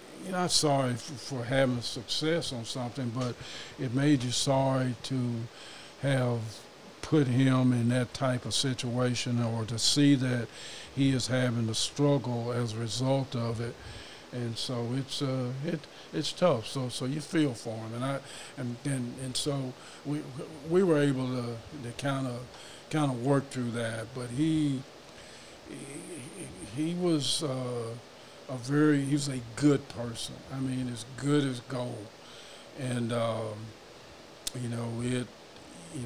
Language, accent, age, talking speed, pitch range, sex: English, American, 50-69, 155 wpm, 115-135 Hz, male